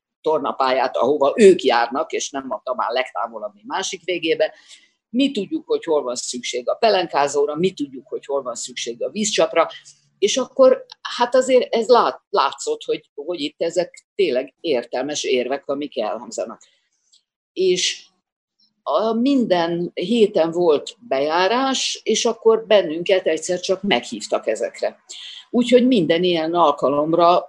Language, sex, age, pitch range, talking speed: Hungarian, female, 50-69, 160-255 Hz, 135 wpm